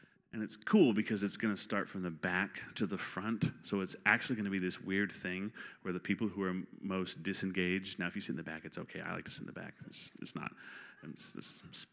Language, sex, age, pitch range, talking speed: English, male, 30-49, 95-110 Hz, 240 wpm